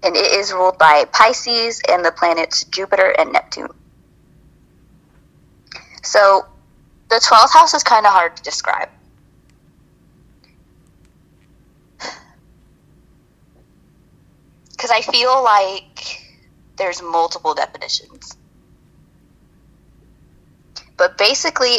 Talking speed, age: 85 wpm, 20-39